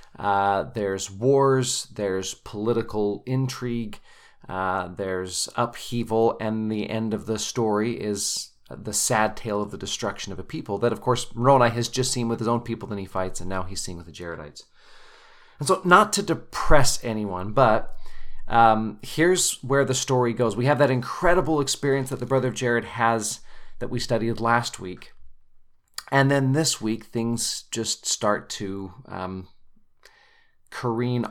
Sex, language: male, English